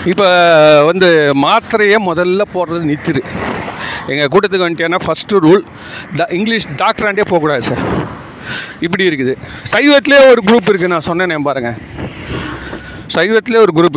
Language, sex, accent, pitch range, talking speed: Tamil, male, native, 145-215 Hz, 130 wpm